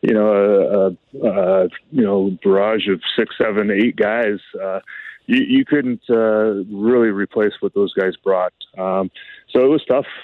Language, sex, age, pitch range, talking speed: English, male, 20-39, 100-115 Hz, 170 wpm